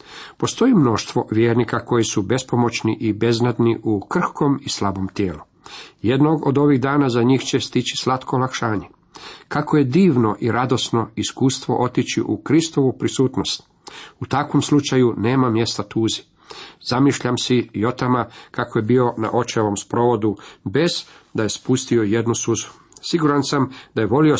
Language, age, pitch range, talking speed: Croatian, 50-69, 110-140 Hz, 150 wpm